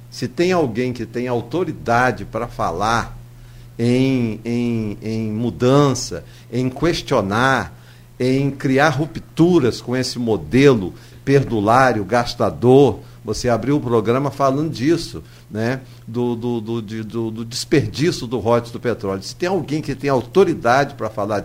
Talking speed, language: 135 wpm, Portuguese